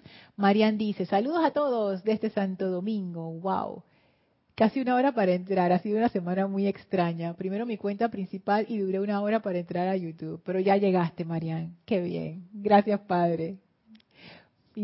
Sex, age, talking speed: female, 30-49, 170 wpm